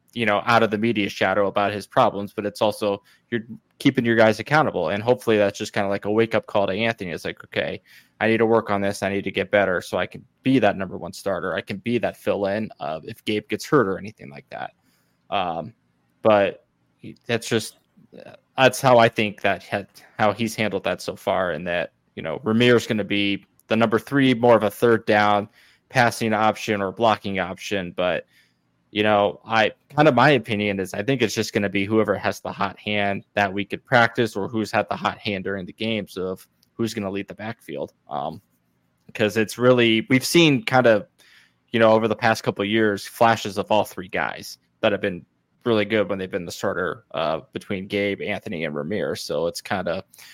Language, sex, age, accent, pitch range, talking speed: English, male, 20-39, American, 100-115 Hz, 225 wpm